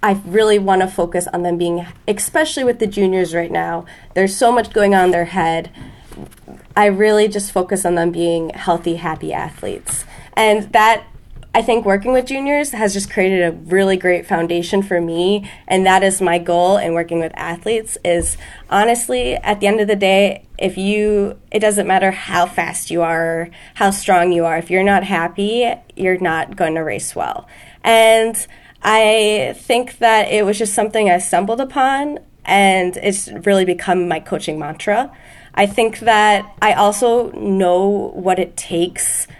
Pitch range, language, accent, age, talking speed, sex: 175-215 Hz, English, American, 20-39, 175 wpm, female